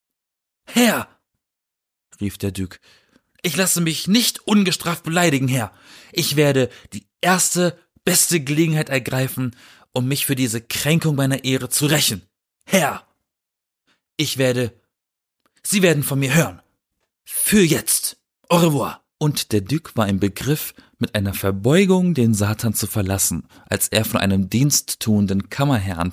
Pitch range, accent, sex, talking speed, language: 100-145 Hz, German, male, 135 wpm, German